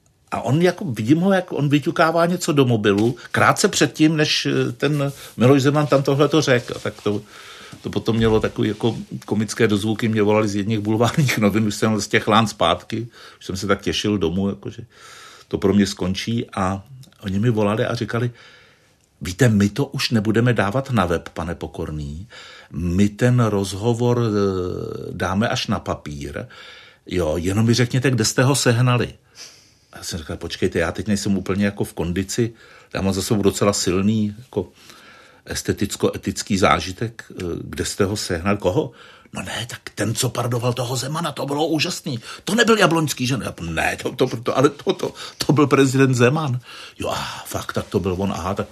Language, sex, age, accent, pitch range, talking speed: Czech, male, 60-79, native, 100-140 Hz, 175 wpm